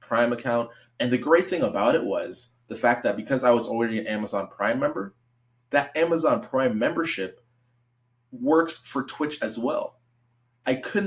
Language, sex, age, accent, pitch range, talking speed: English, male, 20-39, American, 115-135 Hz, 170 wpm